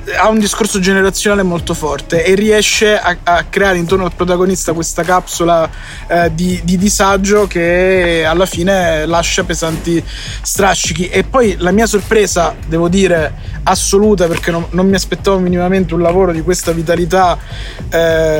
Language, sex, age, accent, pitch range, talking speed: Italian, male, 20-39, native, 170-200 Hz, 150 wpm